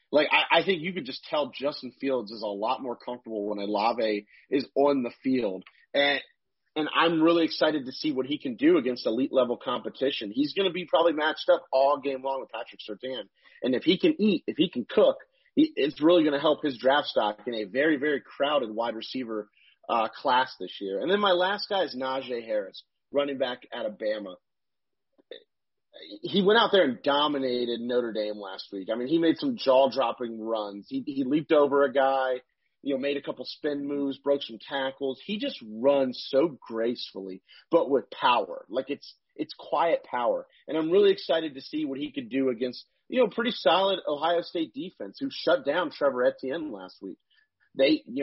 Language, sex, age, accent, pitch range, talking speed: English, male, 30-49, American, 125-205 Hz, 205 wpm